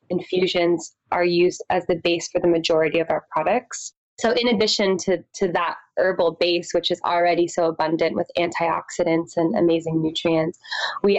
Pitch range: 170-200 Hz